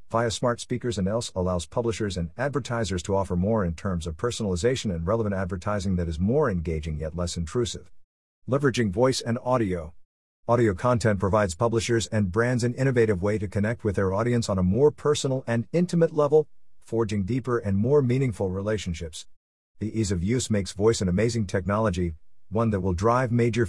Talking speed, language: 180 wpm, English